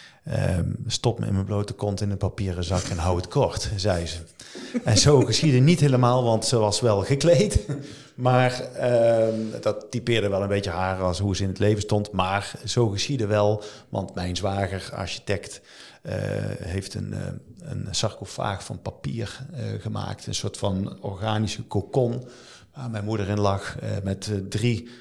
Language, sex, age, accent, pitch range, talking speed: Dutch, male, 50-69, Dutch, 100-120 Hz, 175 wpm